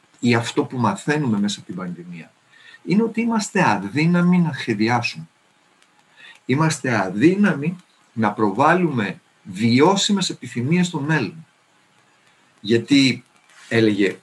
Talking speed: 100 wpm